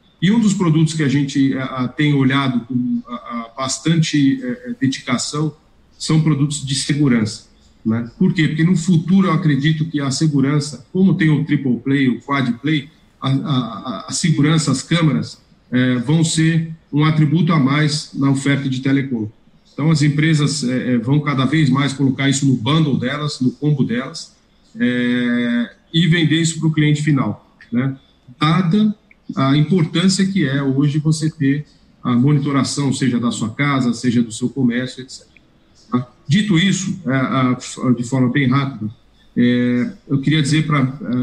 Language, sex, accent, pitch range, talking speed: Portuguese, male, Brazilian, 130-160 Hz, 150 wpm